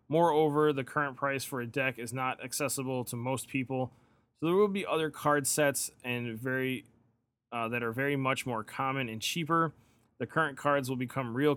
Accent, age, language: American, 20-39, English